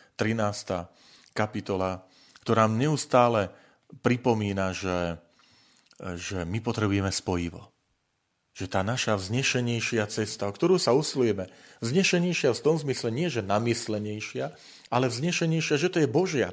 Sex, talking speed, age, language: male, 115 wpm, 40-59, Slovak